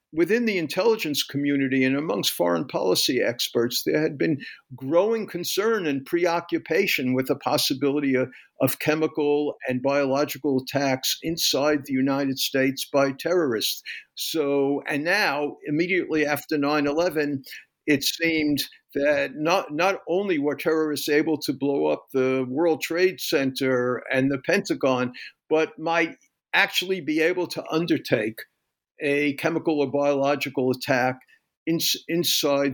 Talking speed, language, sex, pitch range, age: 125 wpm, English, male, 135-165 Hz, 50-69